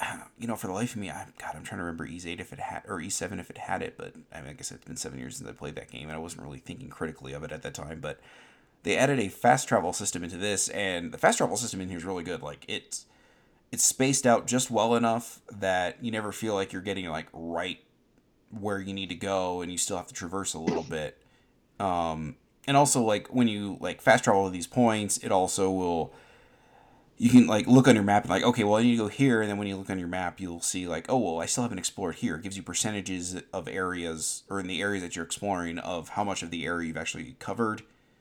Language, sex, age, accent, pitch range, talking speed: English, male, 30-49, American, 90-115 Hz, 265 wpm